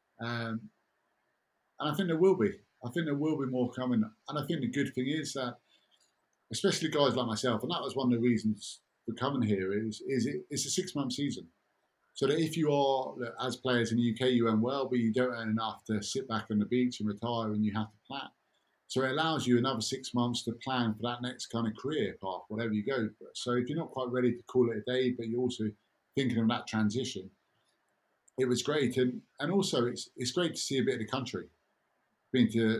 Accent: British